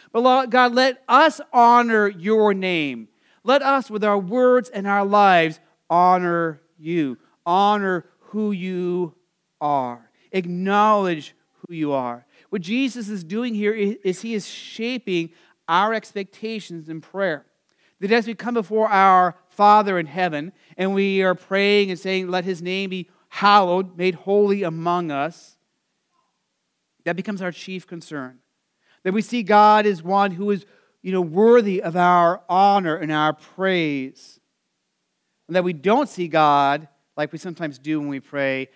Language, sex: English, male